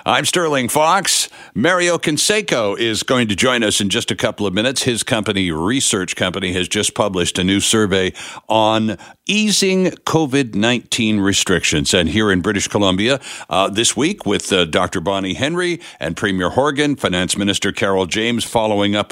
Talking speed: 165 wpm